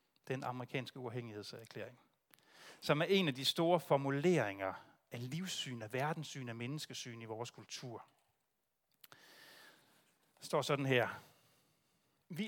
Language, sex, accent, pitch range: Danish, male, native, 125-165 Hz